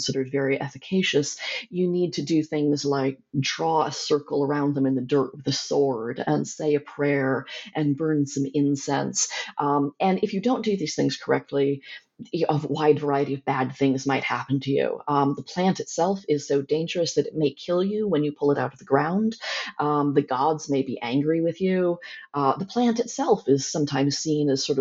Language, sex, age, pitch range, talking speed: English, female, 30-49, 140-165 Hz, 205 wpm